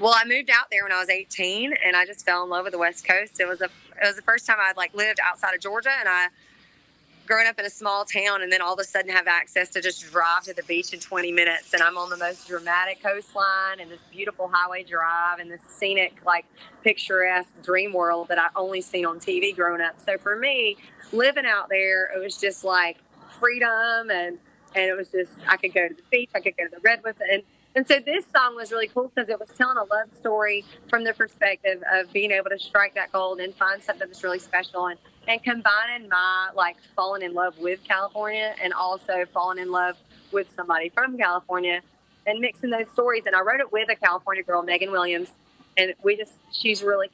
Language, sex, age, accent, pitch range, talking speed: English, female, 30-49, American, 180-215 Hz, 230 wpm